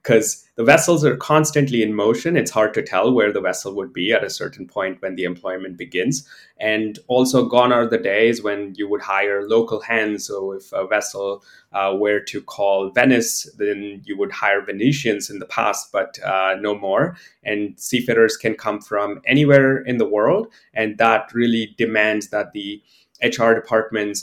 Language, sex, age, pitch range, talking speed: English, male, 20-39, 100-125 Hz, 185 wpm